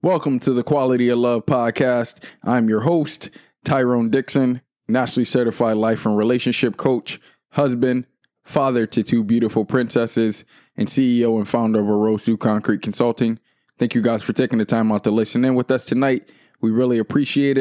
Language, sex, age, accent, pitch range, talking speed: English, male, 20-39, American, 110-130 Hz, 165 wpm